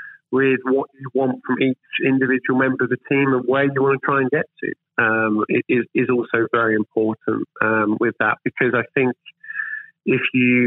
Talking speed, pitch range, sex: 185 wpm, 115-140 Hz, male